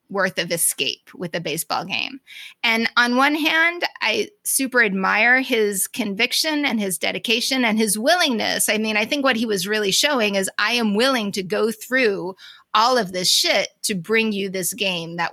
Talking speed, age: 190 wpm, 30-49